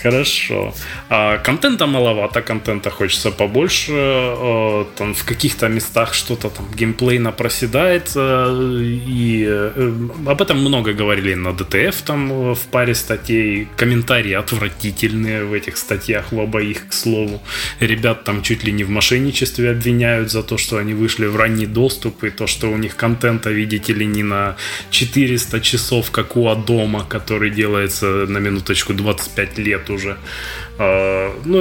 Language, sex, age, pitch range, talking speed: Russian, male, 20-39, 100-125 Hz, 140 wpm